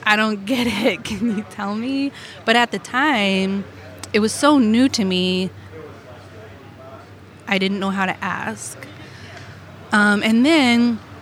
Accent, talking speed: American, 145 wpm